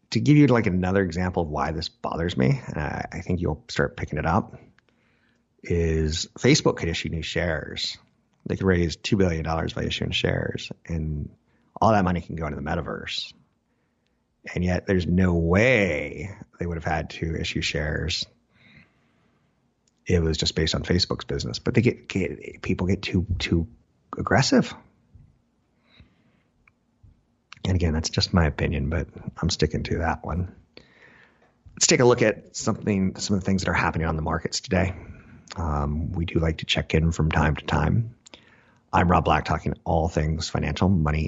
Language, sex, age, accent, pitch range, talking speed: English, male, 30-49, American, 80-95 Hz, 175 wpm